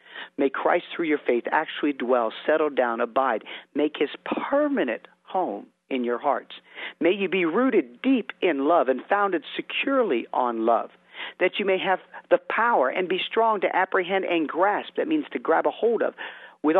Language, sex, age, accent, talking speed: English, male, 50-69, American, 180 wpm